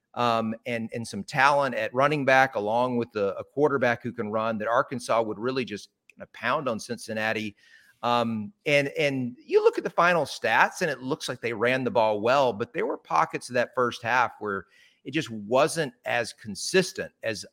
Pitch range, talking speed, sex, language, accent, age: 115-145 Hz, 200 wpm, male, English, American, 40-59